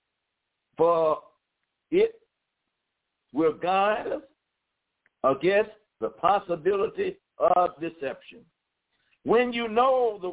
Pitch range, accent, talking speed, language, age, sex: 165-220 Hz, American, 80 wpm, English, 60-79, male